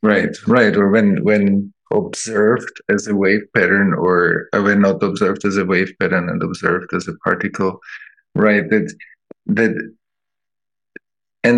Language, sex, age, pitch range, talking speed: English, male, 50-69, 95-135 Hz, 145 wpm